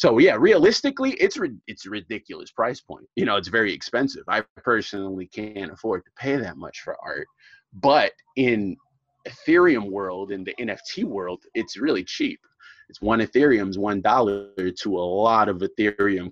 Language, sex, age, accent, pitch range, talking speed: English, male, 30-49, American, 100-140 Hz, 160 wpm